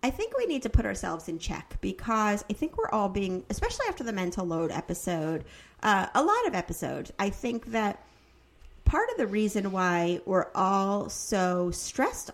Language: English